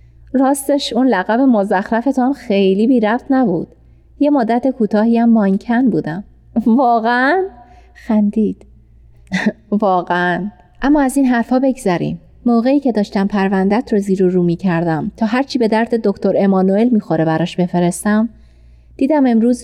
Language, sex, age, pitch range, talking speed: Persian, female, 30-49, 175-240 Hz, 125 wpm